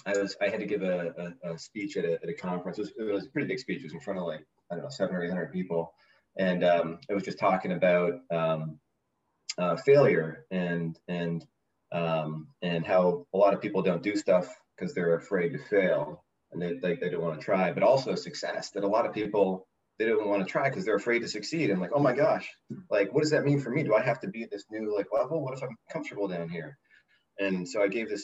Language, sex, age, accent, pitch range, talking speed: English, male, 30-49, American, 85-105 Hz, 260 wpm